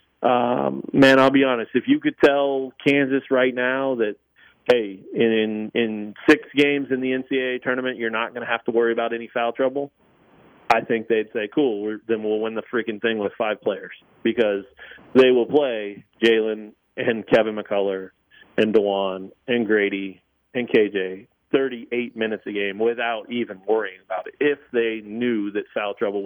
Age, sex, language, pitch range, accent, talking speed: 40-59, male, English, 105-130 Hz, American, 180 wpm